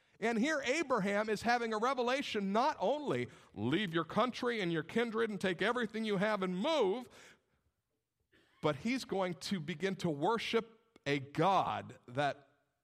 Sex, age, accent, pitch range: male, 50-69, American, 155-225 Hz